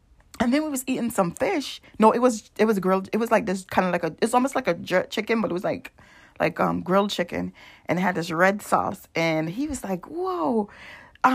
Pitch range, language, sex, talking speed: 190-285 Hz, English, female, 245 wpm